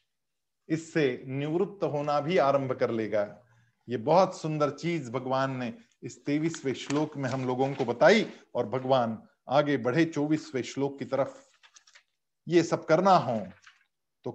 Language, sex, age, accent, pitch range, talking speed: Hindi, male, 50-69, native, 140-200 Hz, 140 wpm